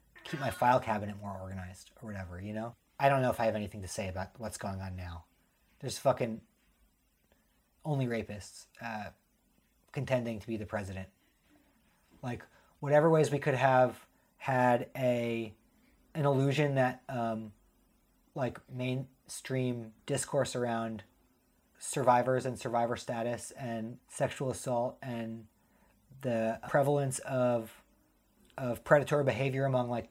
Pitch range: 110-135 Hz